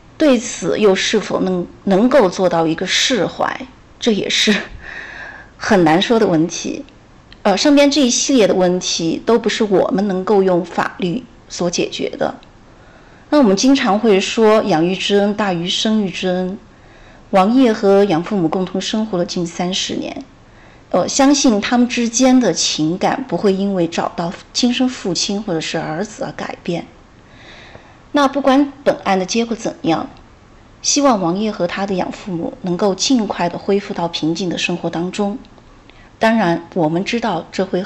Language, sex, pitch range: Chinese, female, 180-230 Hz